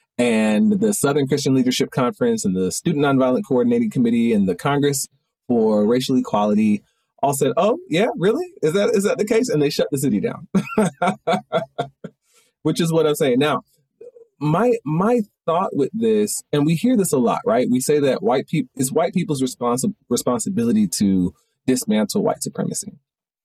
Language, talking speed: English, 170 wpm